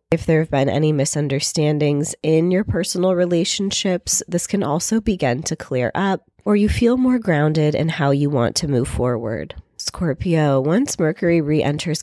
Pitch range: 145-180 Hz